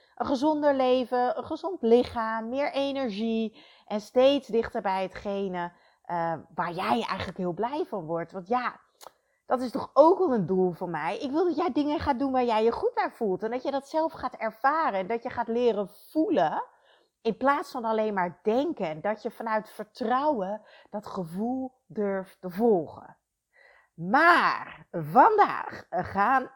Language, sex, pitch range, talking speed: Dutch, female, 190-275 Hz, 175 wpm